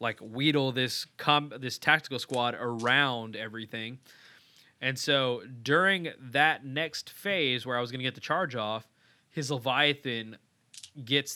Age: 20-39